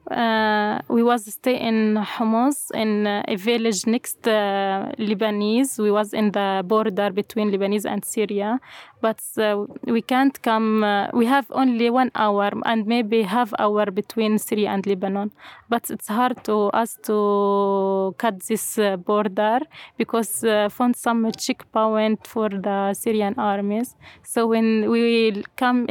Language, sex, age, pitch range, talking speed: English, female, 20-39, 210-230 Hz, 150 wpm